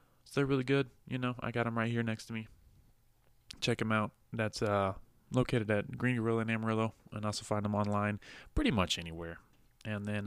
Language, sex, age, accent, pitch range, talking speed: English, male, 20-39, American, 105-120 Hz, 205 wpm